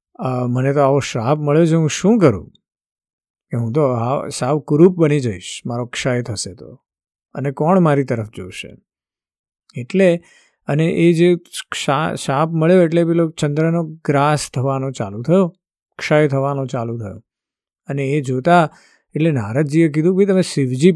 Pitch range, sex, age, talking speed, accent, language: 125-165 Hz, male, 50-69, 125 wpm, native, Gujarati